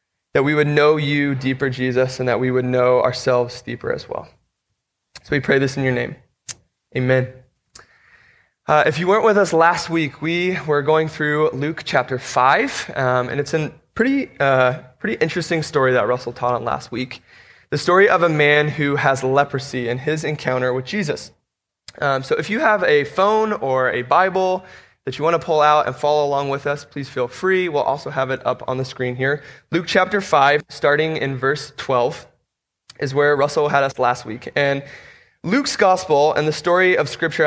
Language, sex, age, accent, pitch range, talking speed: English, male, 20-39, American, 130-155 Hz, 195 wpm